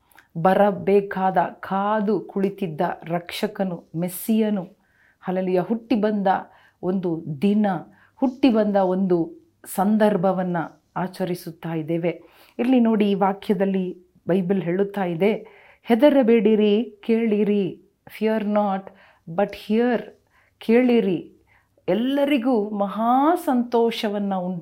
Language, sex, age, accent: Kannada, female, 40-59, native